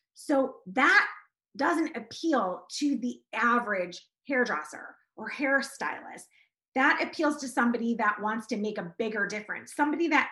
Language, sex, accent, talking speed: English, female, American, 135 wpm